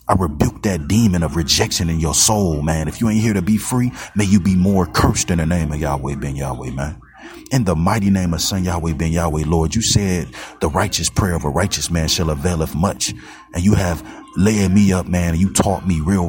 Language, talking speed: English, 235 wpm